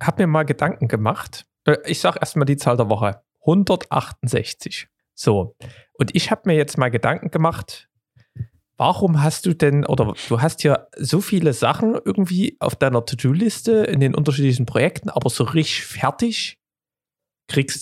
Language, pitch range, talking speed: German, 125-165 Hz, 155 wpm